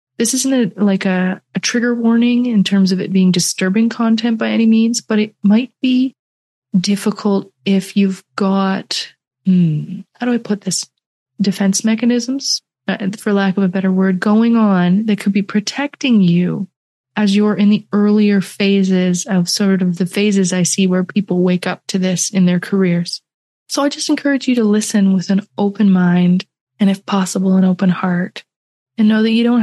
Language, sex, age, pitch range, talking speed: English, female, 20-39, 185-215 Hz, 180 wpm